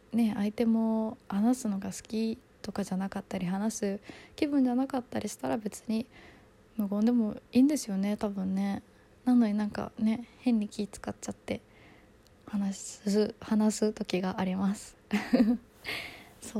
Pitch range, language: 190-230 Hz, Japanese